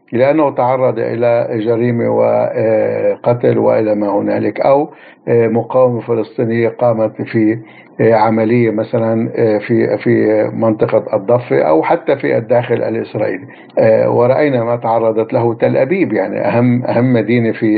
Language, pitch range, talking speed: Arabic, 110-125 Hz, 120 wpm